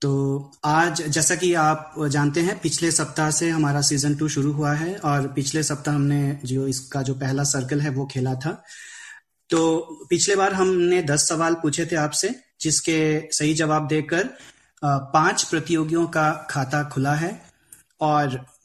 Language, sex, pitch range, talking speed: Hindi, male, 140-160 Hz, 160 wpm